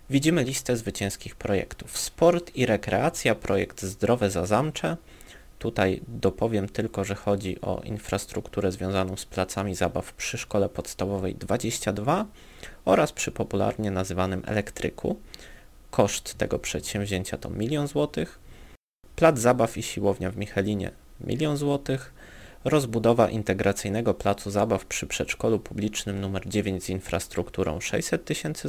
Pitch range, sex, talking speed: 95-120 Hz, male, 120 wpm